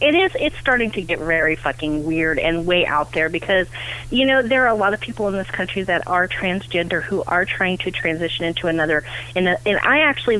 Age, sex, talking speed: 30-49, female, 230 wpm